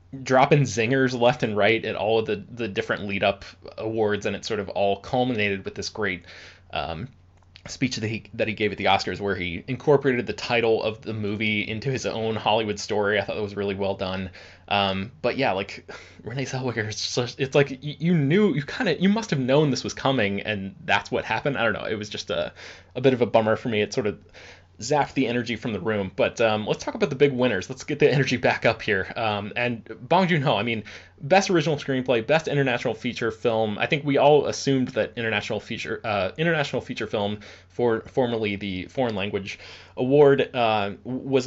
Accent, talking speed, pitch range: American, 215 wpm, 105-135 Hz